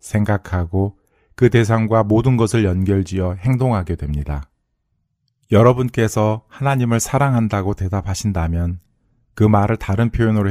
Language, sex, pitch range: Korean, male, 90-115 Hz